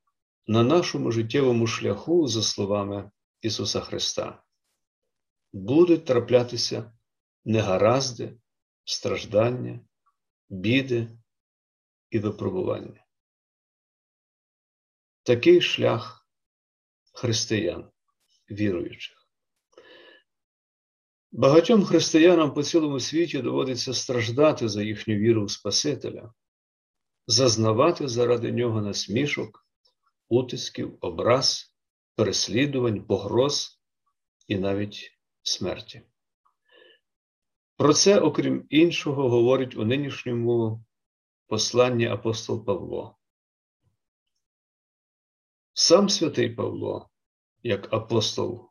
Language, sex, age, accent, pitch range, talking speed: Ukrainian, male, 50-69, native, 105-135 Hz, 70 wpm